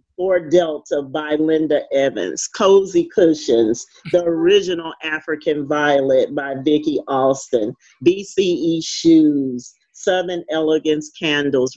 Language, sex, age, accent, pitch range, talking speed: English, male, 40-59, American, 150-190 Hz, 95 wpm